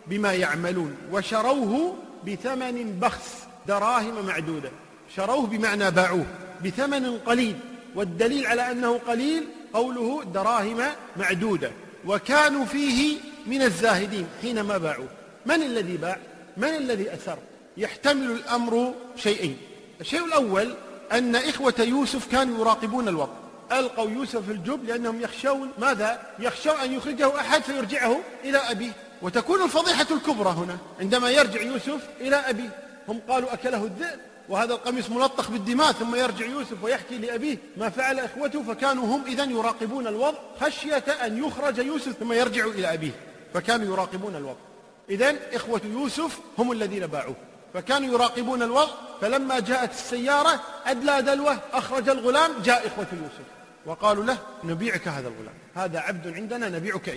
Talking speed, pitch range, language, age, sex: 130 wpm, 205-270 Hz, Arabic, 40-59, male